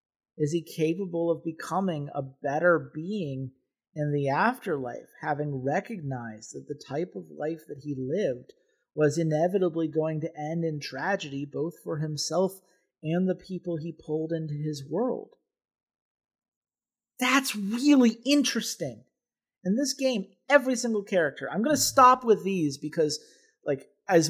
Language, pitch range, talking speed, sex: English, 145-185 Hz, 140 wpm, male